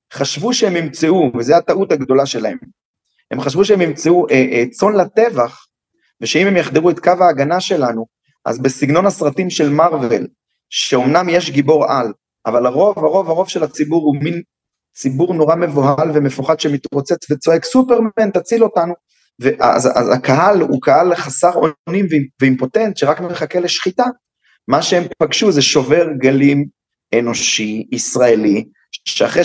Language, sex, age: English, male, 30-49